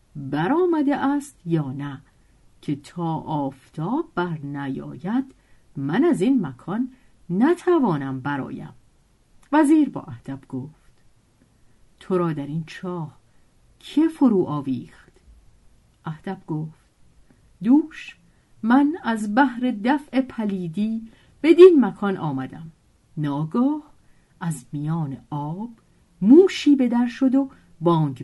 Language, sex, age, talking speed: Persian, female, 50-69, 105 wpm